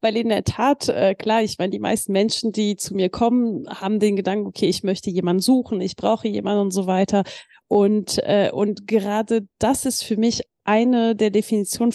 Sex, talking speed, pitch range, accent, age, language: female, 200 wpm, 200-245 Hz, German, 30-49, German